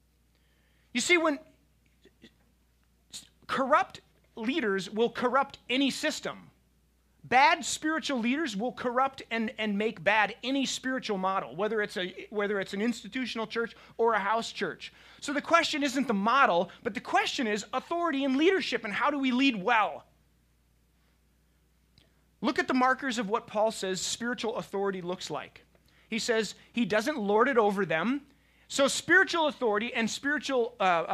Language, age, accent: English, 30-49, American